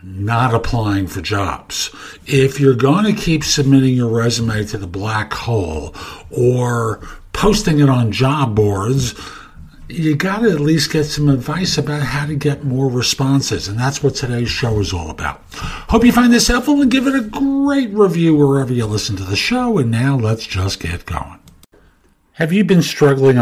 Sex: male